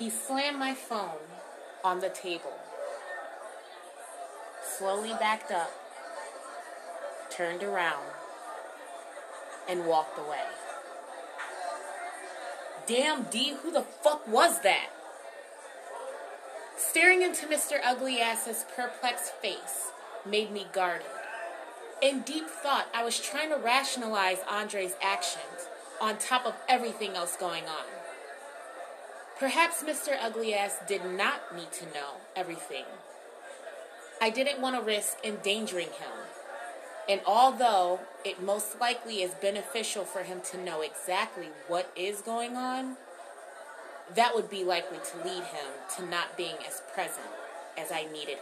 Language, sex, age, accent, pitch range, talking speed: English, female, 30-49, American, 185-255 Hz, 120 wpm